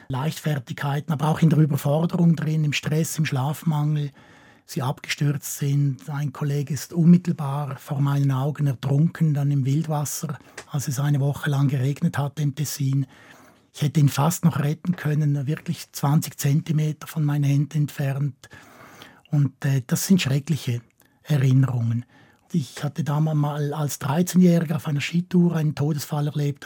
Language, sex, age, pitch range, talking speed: German, male, 60-79, 140-160 Hz, 150 wpm